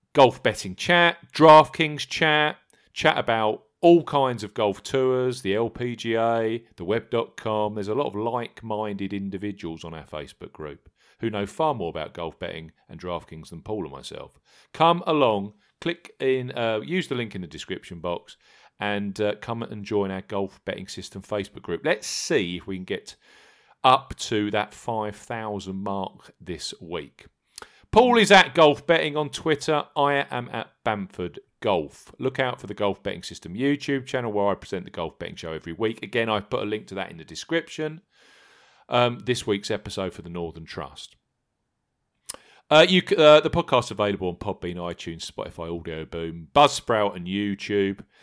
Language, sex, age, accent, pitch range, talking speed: English, male, 40-59, British, 100-145 Hz, 175 wpm